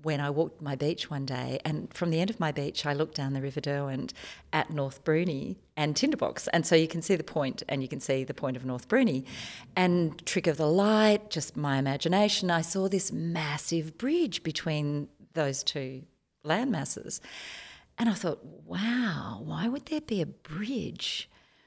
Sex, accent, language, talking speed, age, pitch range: female, Australian, English, 190 wpm, 40-59, 135-170 Hz